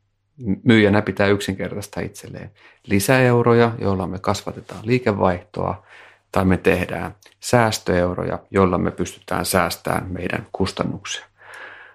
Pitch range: 95-105 Hz